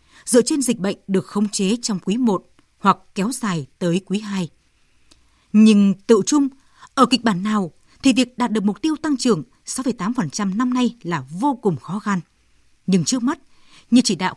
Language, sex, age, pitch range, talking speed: Vietnamese, female, 20-39, 175-240 Hz, 190 wpm